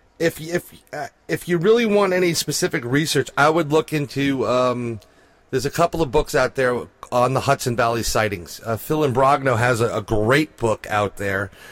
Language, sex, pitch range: English, male, 120-155 Hz